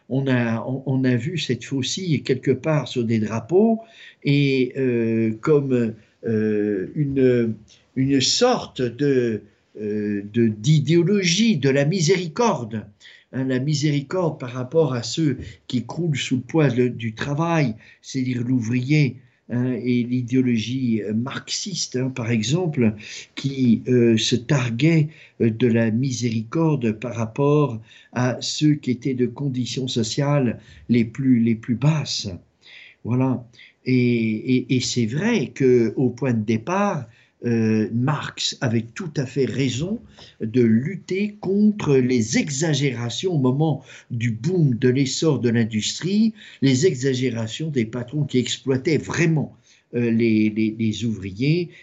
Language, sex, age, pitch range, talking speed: French, male, 50-69, 115-150 Hz, 130 wpm